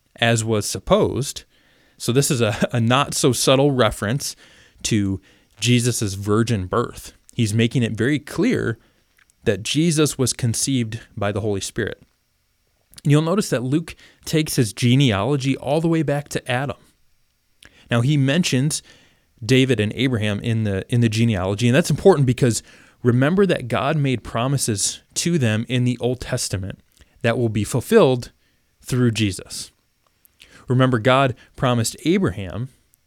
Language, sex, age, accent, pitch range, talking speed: English, male, 20-39, American, 110-140 Hz, 140 wpm